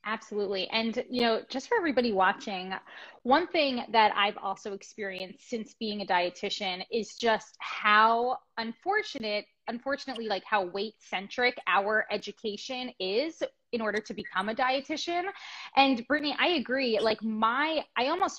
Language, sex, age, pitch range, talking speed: English, female, 20-39, 210-260 Hz, 145 wpm